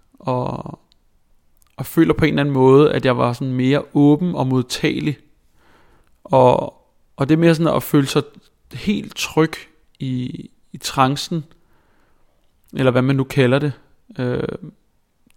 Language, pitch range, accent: Danish, 125-150 Hz, native